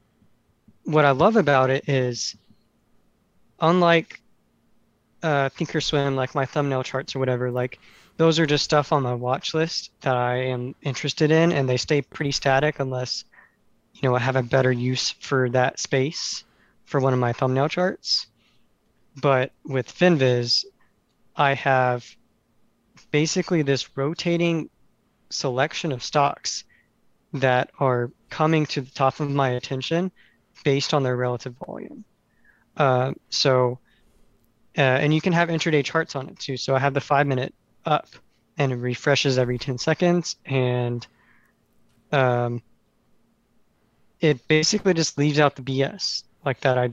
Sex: male